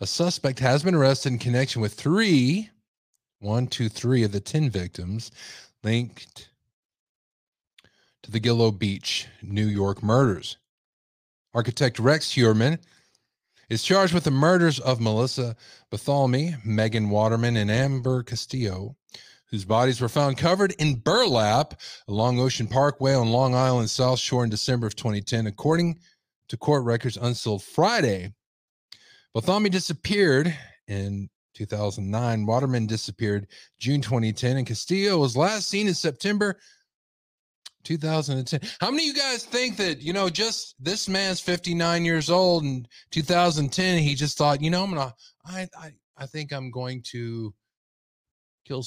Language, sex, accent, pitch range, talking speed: English, male, American, 115-155 Hz, 140 wpm